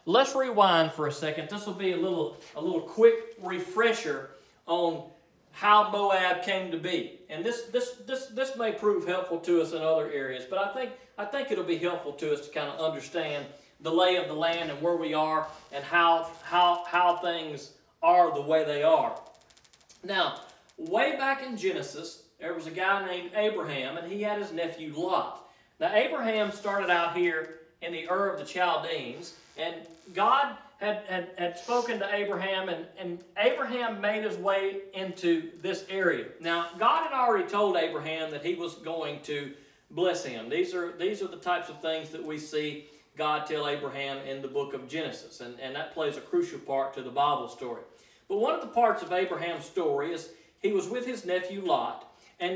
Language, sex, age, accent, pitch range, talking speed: English, male, 40-59, American, 160-210 Hz, 190 wpm